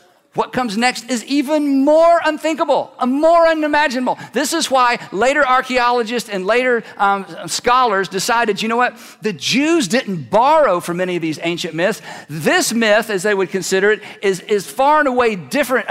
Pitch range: 190-260 Hz